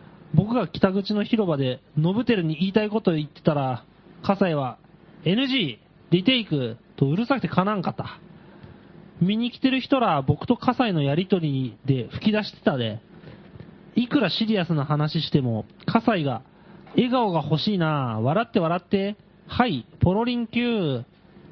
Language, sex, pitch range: Japanese, male, 160-225 Hz